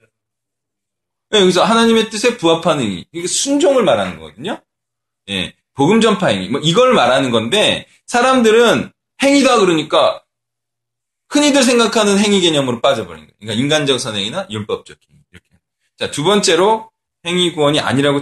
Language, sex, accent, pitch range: Korean, male, native, 115-175 Hz